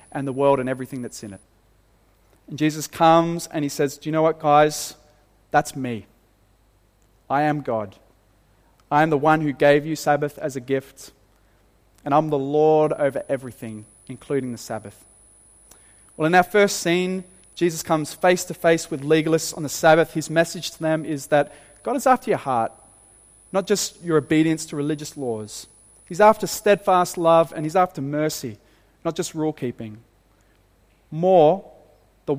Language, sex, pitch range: English, male, 115-165 Hz